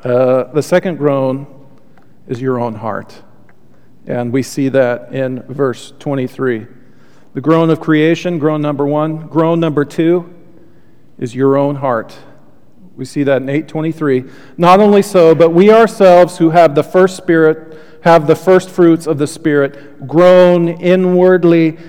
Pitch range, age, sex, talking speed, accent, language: 130-170 Hz, 40-59, male, 150 wpm, American, English